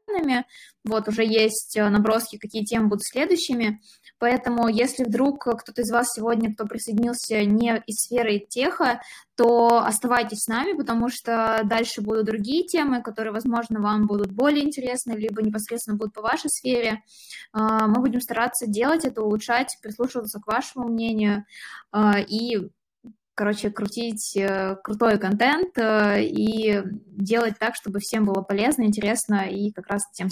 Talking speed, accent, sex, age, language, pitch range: 140 wpm, native, female, 20-39, Russian, 205-235 Hz